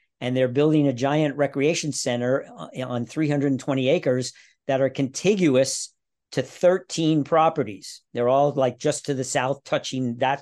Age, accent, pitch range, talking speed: 50-69, American, 135-160 Hz, 145 wpm